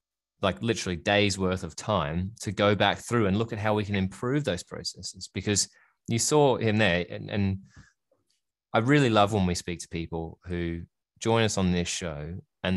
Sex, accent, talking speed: male, Australian, 195 wpm